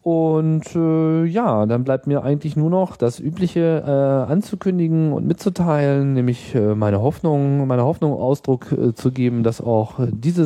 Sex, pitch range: male, 100-140 Hz